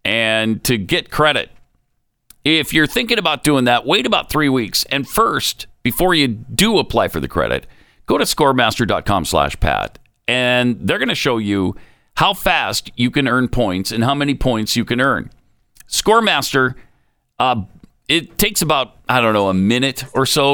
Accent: American